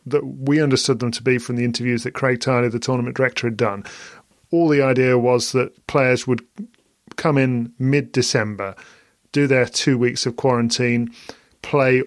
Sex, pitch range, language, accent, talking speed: male, 120-140 Hz, English, British, 170 wpm